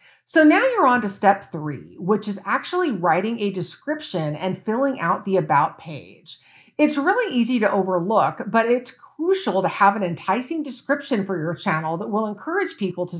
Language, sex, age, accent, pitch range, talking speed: English, female, 50-69, American, 180-265 Hz, 180 wpm